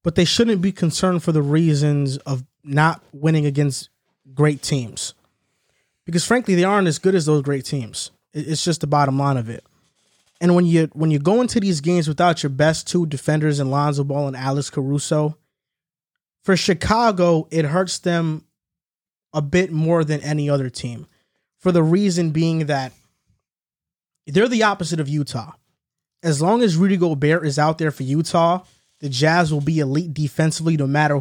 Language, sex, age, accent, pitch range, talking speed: English, male, 20-39, American, 140-170 Hz, 175 wpm